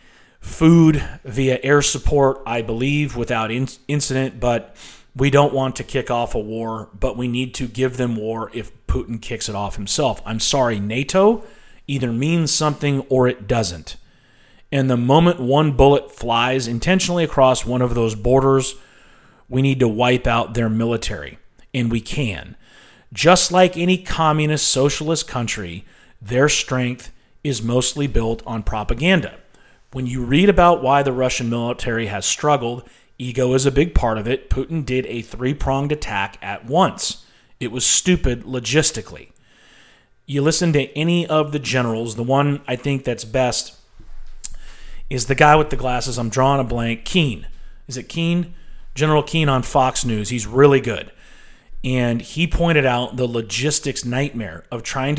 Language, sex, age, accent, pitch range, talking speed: English, male, 40-59, American, 115-145 Hz, 160 wpm